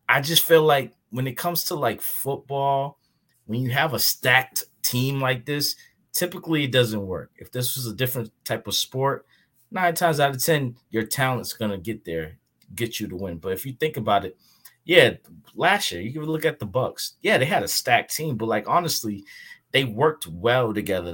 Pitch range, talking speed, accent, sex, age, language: 100-130 Hz, 205 wpm, American, male, 20-39, English